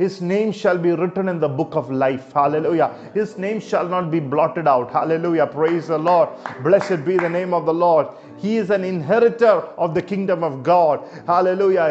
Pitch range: 170-225 Hz